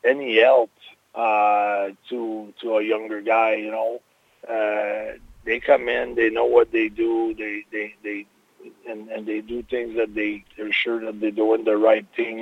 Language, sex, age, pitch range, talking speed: English, male, 40-59, 110-140 Hz, 180 wpm